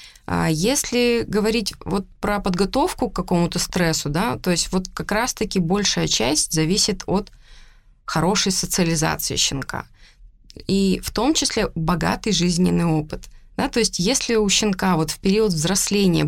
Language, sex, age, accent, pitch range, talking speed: Russian, female, 20-39, native, 165-200 Hz, 140 wpm